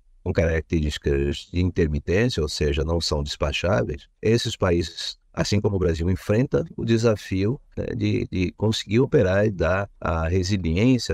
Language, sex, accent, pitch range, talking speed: Portuguese, male, Brazilian, 85-115 Hz, 145 wpm